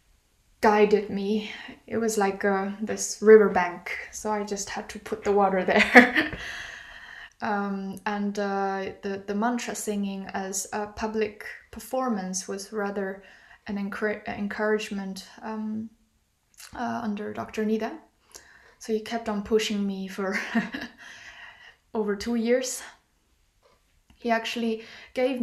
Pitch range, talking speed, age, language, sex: 205-235 Hz, 120 wpm, 10-29, English, female